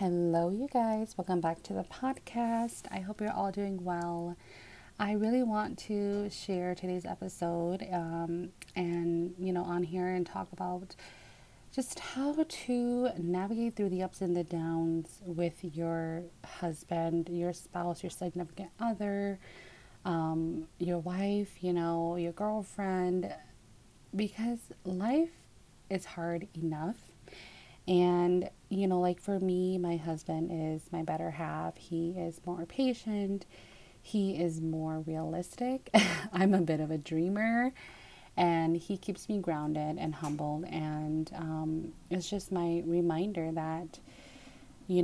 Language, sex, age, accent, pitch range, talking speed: English, female, 30-49, American, 165-195 Hz, 135 wpm